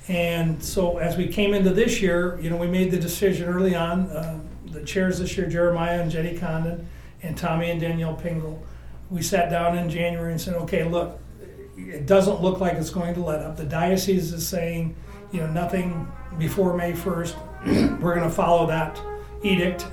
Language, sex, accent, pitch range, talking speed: English, male, American, 160-190 Hz, 195 wpm